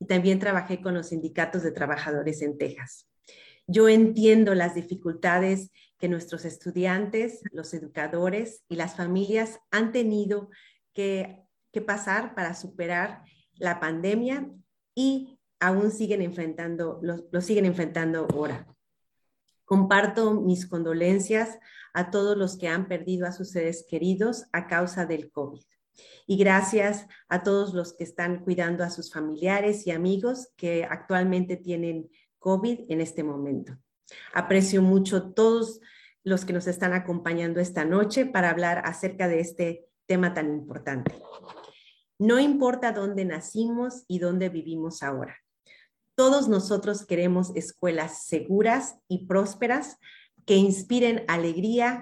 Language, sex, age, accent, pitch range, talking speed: English, female, 30-49, Mexican, 170-210 Hz, 130 wpm